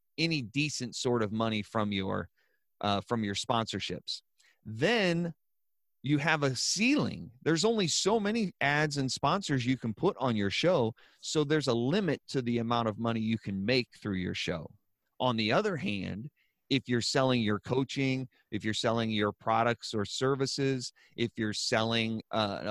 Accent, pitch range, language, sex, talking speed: American, 110-140 Hz, English, male, 170 wpm